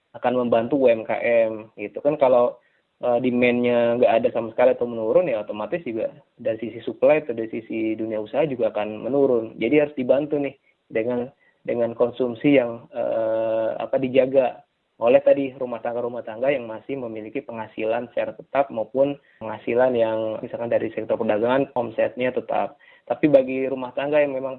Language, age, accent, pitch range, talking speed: Indonesian, 20-39, native, 110-135 Hz, 155 wpm